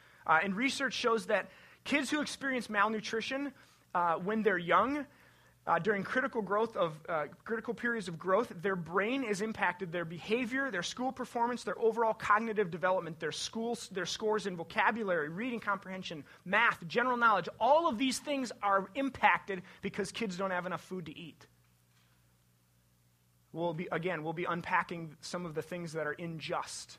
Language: English